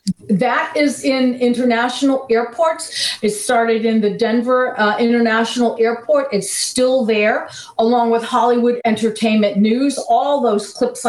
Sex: female